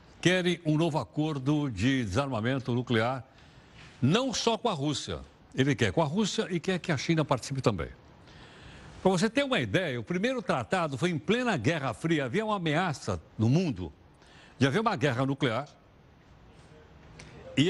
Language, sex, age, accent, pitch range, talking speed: Portuguese, male, 60-79, Brazilian, 120-165 Hz, 165 wpm